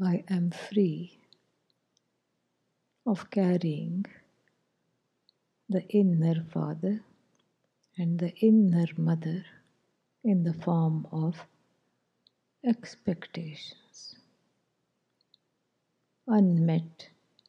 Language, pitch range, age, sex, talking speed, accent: English, 165-200 Hz, 60-79, female, 60 wpm, Indian